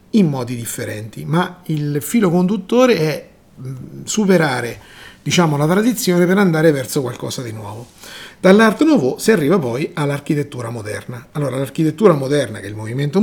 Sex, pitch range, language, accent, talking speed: male, 125-180 Hz, Italian, native, 145 wpm